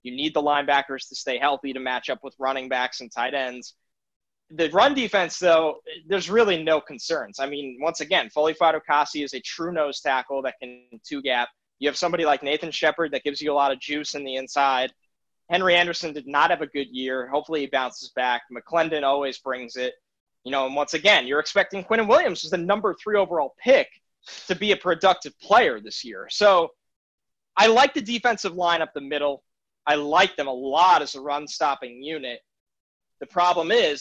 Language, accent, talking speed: English, American, 200 wpm